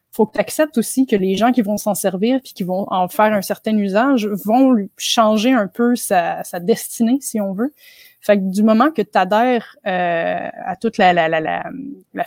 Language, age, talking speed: French, 20-39, 220 wpm